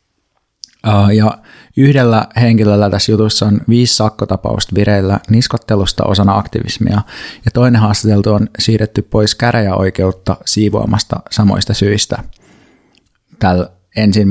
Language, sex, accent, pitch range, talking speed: Finnish, male, native, 100-115 Hz, 100 wpm